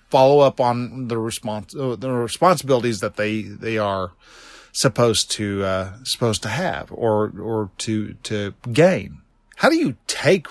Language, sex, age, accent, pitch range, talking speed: English, male, 40-59, American, 120-160 Hz, 150 wpm